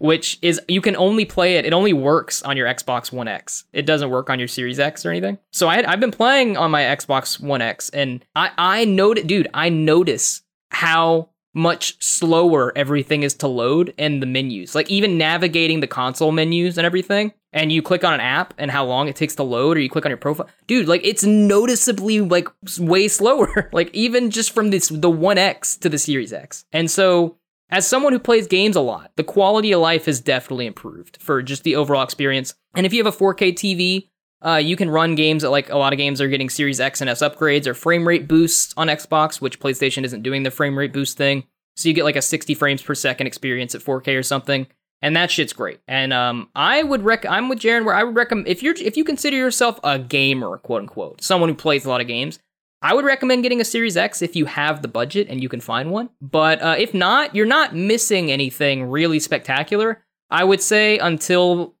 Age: 10-29